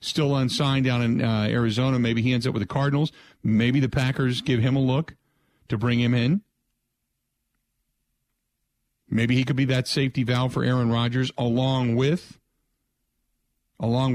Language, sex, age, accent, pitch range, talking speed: English, male, 50-69, American, 120-135 Hz, 155 wpm